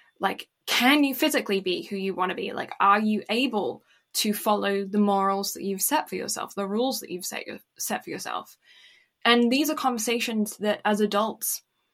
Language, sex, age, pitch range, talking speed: English, female, 10-29, 200-235 Hz, 195 wpm